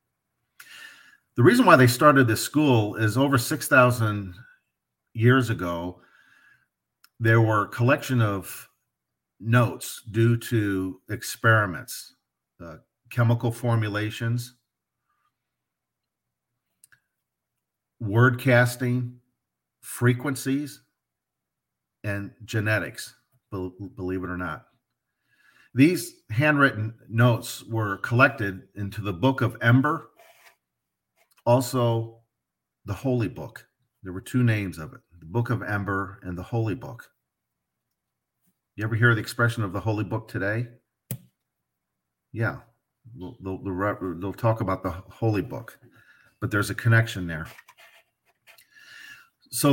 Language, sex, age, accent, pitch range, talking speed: English, male, 50-69, American, 100-125 Hz, 105 wpm